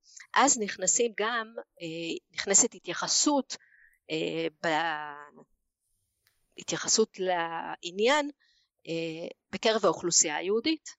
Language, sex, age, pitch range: Hebrew, female, 40-59, 170-220 Hz